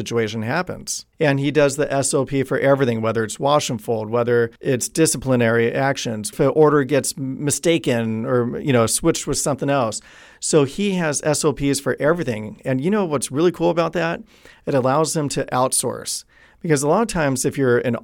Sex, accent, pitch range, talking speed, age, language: male, American, 120-155 Hz, 190 wpm, 40-59, English